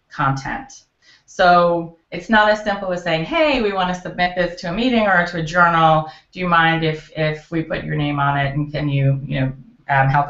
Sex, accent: female, American